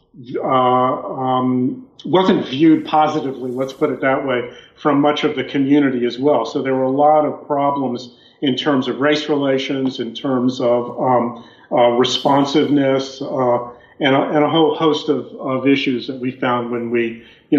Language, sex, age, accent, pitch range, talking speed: English, male, 40-59, American, 125-150 Hz, 175 wpm